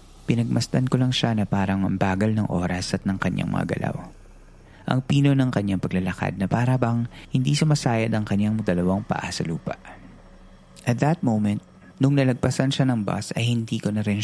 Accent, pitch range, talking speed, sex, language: native, 95-130 Hz, 175 wpm, male, Filipino